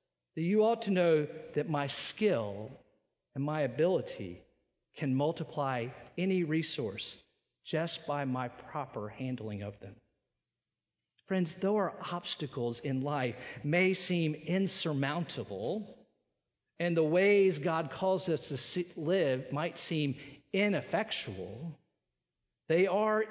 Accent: American